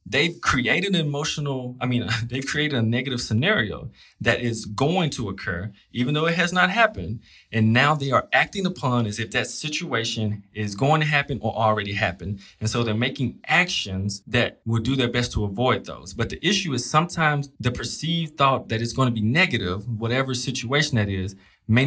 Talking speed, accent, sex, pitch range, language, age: 195 wpm, American, male, 110-135 Hz, English, 20-39